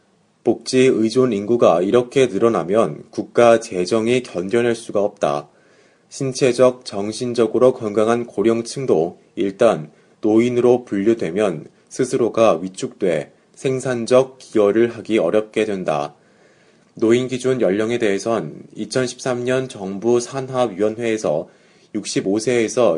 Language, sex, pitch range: Korean, male, 105-125 Hz